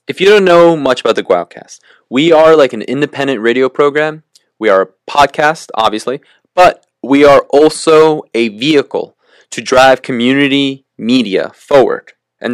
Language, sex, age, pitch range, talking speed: English, male, 20-39, 110-150 Hz, 155 wpm